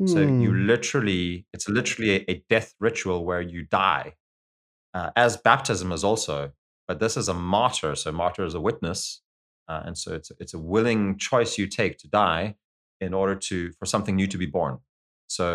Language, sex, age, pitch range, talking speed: English, male, 30-49, 85-105 Hz, 195 wpm